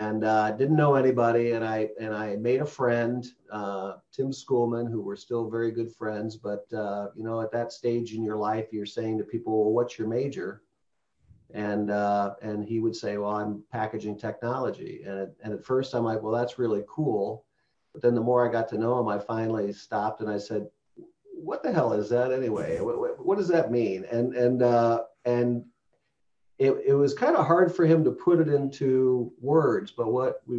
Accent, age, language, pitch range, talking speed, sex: American, 40-59, English, 110-135 Hz, 205 wpm, male